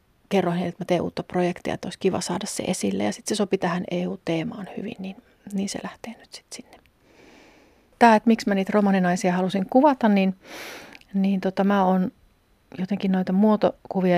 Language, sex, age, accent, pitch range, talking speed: Finnish, female, 40-59, native, 180-210 Hz, 180 wpm